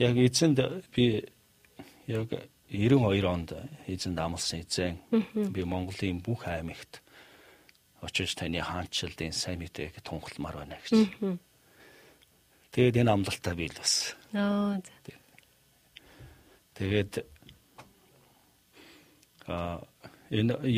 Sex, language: male, Korean